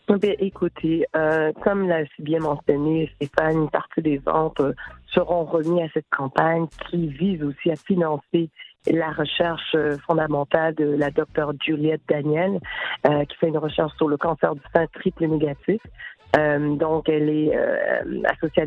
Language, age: French, 40-59